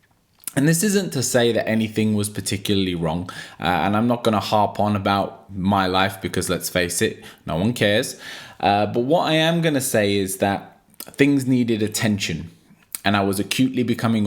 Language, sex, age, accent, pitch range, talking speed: English, male, 20-39, British, 95-120 Hz, 195 wpm